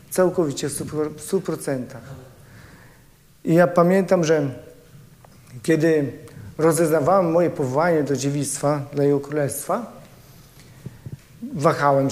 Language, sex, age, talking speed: Polish, male, 40-59, 90 wpm